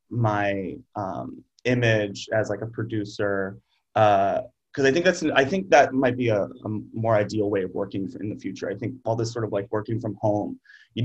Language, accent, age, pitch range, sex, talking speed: English, American, 30-49, 105-120 Hz, male, 210 wpm